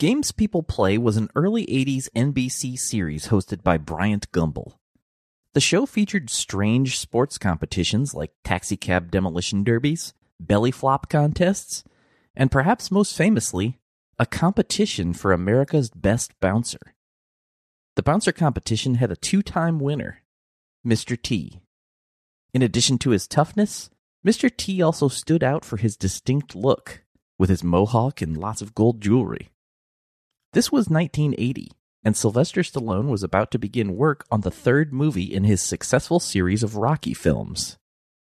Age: 30-49